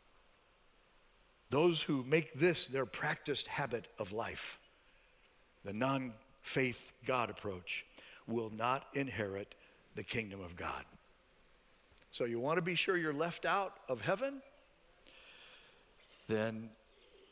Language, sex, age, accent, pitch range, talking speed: English, male, 50-69, American, 130-185 Hz, 110 wpm